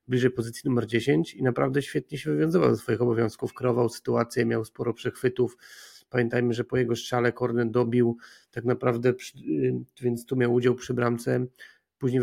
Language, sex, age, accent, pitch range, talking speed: Polish, male, 40-59, native, 115-130 Hz, 160 wpm